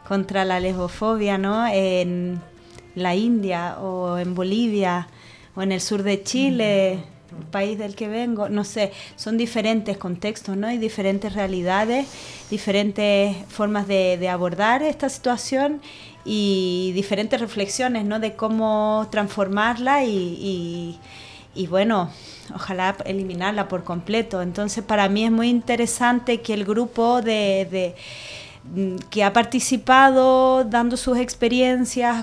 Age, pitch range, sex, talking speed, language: 30-49, 195-235 Hz, female, 125 wpm, Spanish